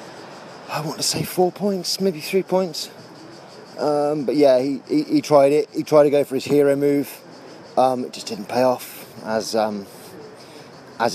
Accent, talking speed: British, 185 wpm